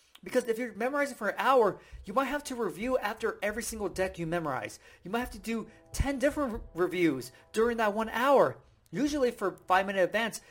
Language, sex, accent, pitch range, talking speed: English, male, American, 175-235 Hz, 200 wpm